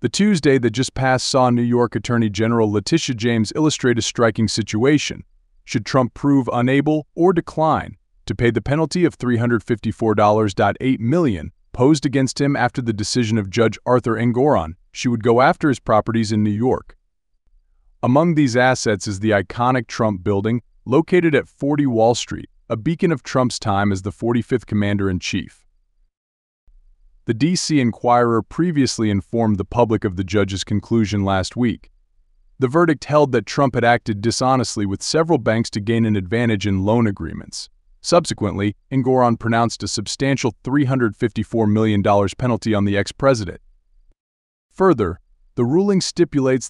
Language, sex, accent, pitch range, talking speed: English, male, American, 105-130 Hz, 150 wpm